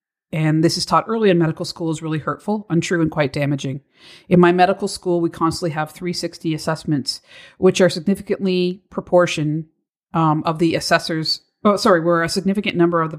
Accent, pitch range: American, 155-185 Hz